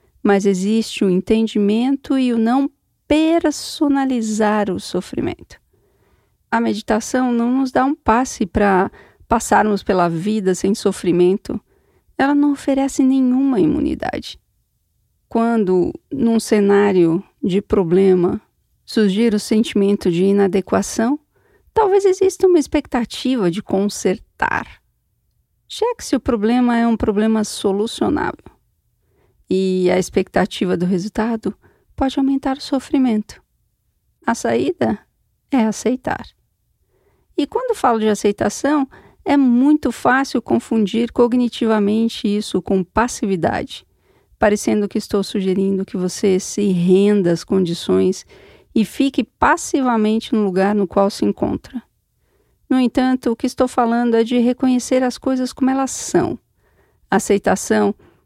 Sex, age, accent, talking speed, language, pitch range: female, 40-59, Brazilian, 115 wpm, Portuguese, 200-265 Hz